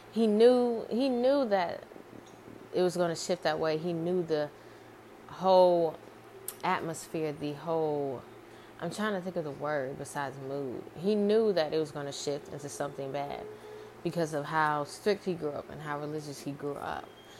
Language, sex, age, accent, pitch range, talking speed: English, female, 20-39, American, 150-190 Hz, 180 wpm